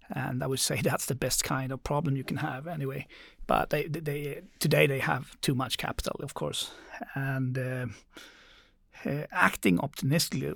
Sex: male